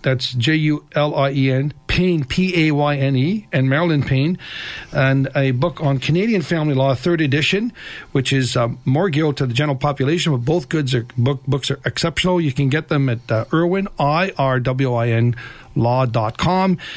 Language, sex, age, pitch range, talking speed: English, male, 50-69, 125-155 Hz, 165 wpm